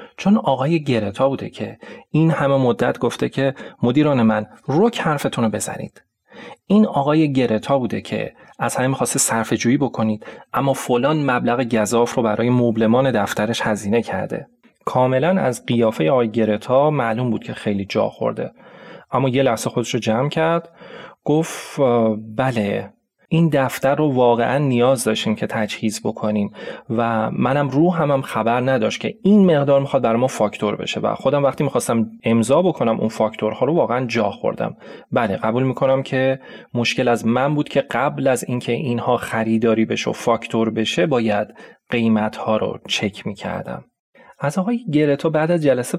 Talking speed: 160 wpm